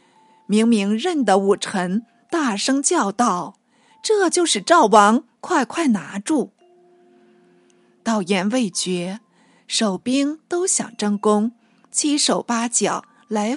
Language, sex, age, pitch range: Chinese, female, 50-69, 200-275 Hz